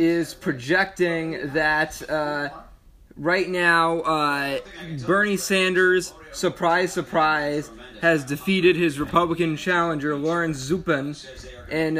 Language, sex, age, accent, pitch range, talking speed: English, male, 20-39, American, 150-175 Hz, 95 wpm